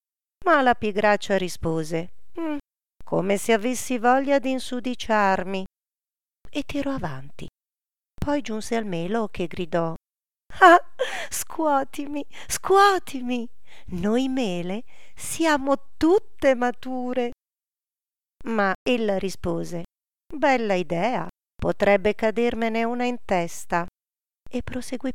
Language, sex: Italian, female